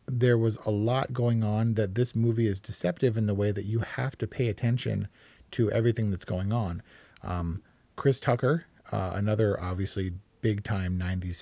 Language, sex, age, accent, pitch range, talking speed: English, male, 40-59, American, 105-125 Hz, 175 wpm